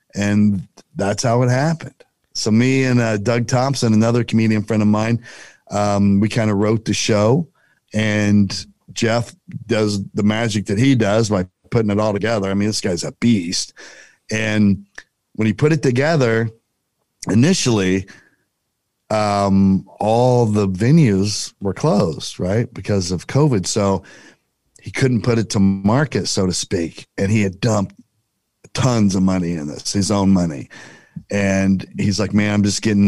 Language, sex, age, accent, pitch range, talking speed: English, male, 40-59, American, 100-120 Hz, 160 wpm